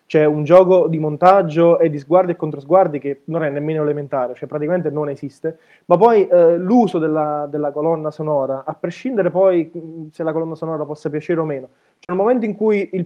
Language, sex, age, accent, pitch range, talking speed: Italian, male, 20-39, native, 150-185 Hz, 205 wpm